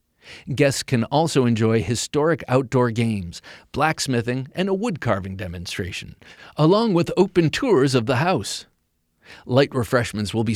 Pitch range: 110-160 Hz